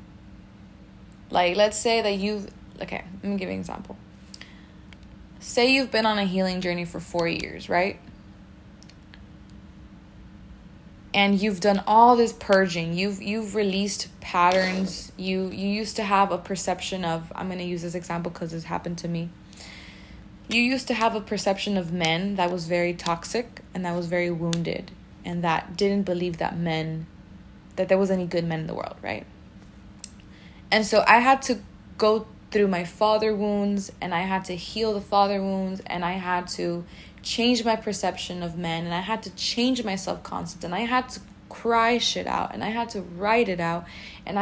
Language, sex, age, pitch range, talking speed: English, female, 20-39, 175-215 Hz, 180 wpm